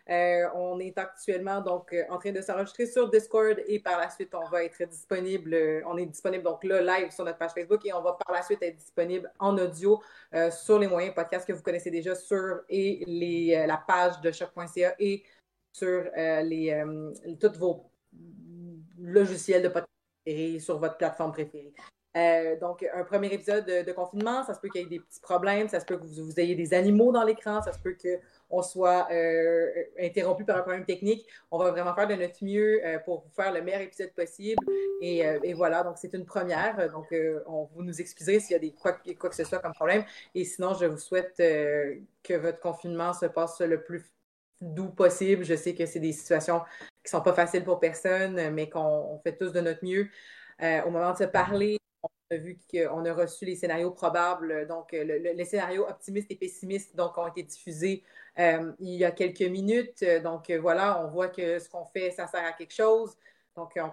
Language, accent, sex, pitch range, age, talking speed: French, Canadian, female, 170-195 Hz, 30-49, 215 wpm